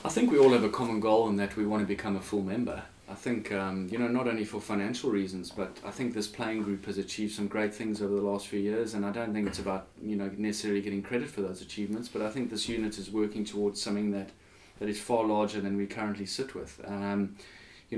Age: 20-39